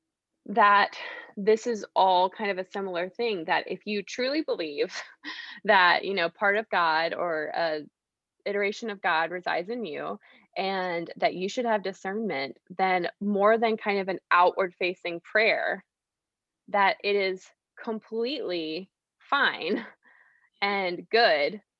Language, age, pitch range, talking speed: English, 20-39, 185-225 Hz, 140 wpm